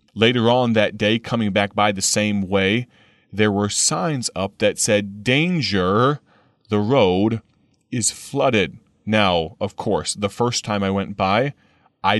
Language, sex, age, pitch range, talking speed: English, male, 30-49, 100-125 Hz, 150 wpm